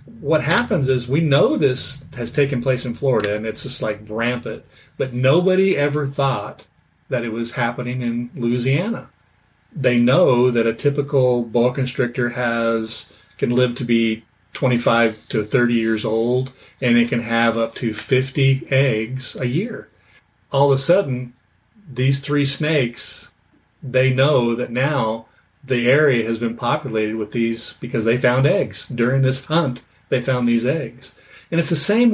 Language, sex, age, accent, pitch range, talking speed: English, male, 40-59, American, 120-140 Hz, 160 wpm